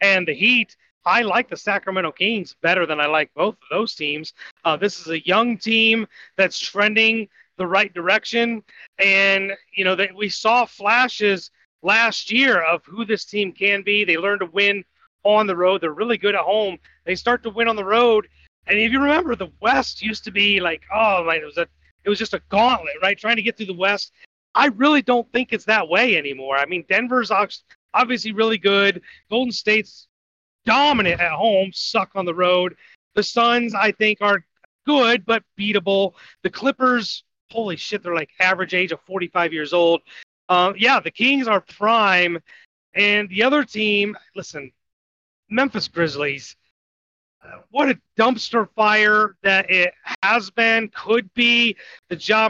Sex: male